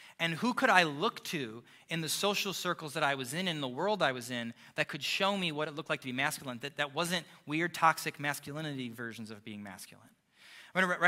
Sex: male